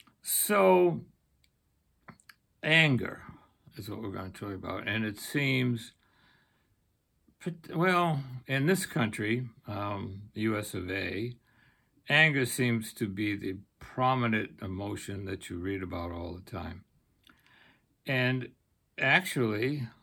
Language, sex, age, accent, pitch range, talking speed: English, male, 60-79, American, 105-145 Hz, 110 wpm